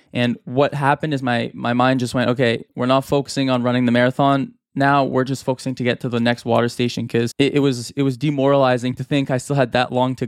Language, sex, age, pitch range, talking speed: English, male, 20-39, 120-135 Hz, 250 wpm